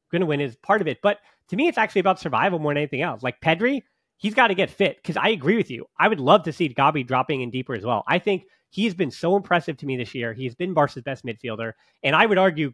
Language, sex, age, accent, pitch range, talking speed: English, male, 30-49, American, 135-180 Hz, 285 wpm